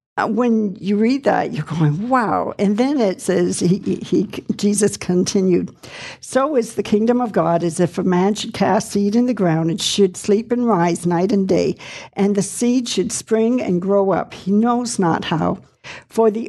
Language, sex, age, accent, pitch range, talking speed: English, female, 60-79, American, 185-225 Hz, 195 wpm